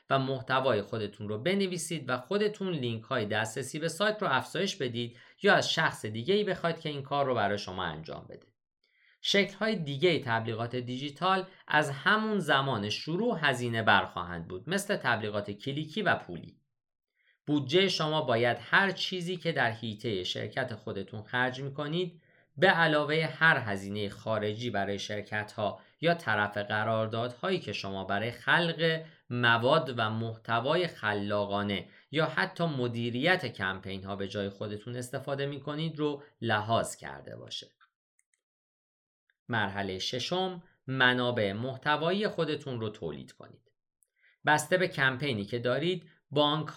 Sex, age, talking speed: male, 50-69, 130 wpm